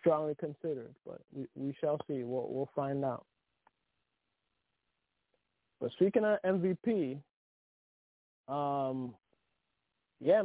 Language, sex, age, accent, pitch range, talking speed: English, male, 20-39, American, 135-160 Hz, 100 wpm